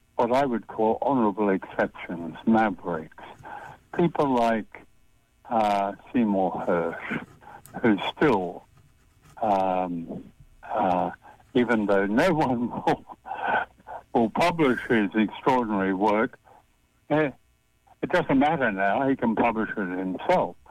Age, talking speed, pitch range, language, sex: 60-79, 105 wpm, 95-135 Hz, English, male